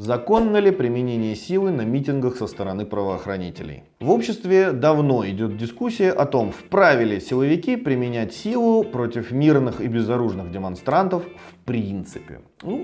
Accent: native